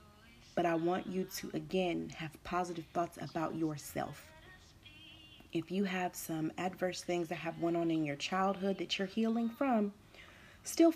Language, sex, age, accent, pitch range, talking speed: English, female, 30-49, American, 155-180 Hz, 160 wpm